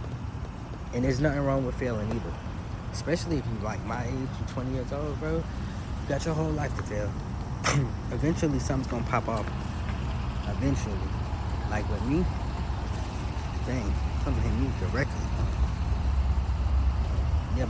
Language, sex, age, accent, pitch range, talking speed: English, male, 20-39, American, 95-125 Hz, 140 wpm